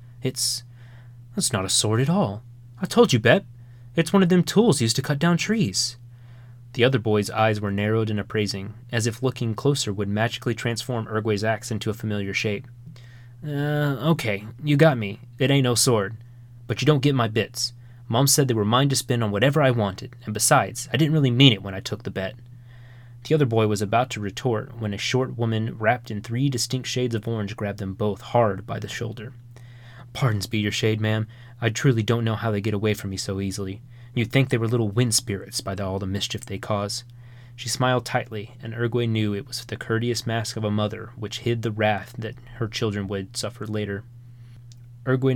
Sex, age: male, 20-39